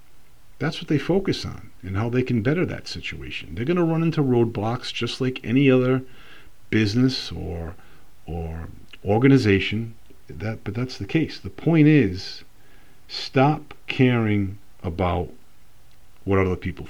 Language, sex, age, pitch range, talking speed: English, male, 50-69, 100-130 Hz, 140 wpm